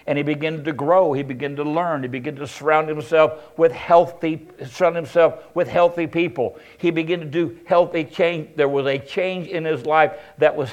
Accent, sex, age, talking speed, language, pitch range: American, male, 60-79, 200 wpm, English, 140-160 Hz